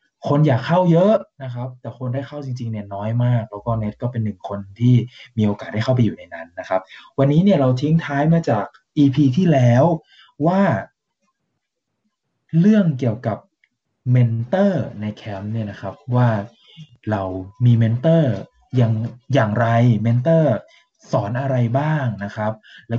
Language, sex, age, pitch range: Thai, male, 20-39, 110-145 Hz